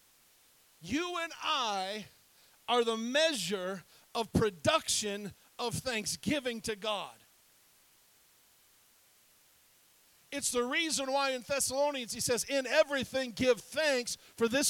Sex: male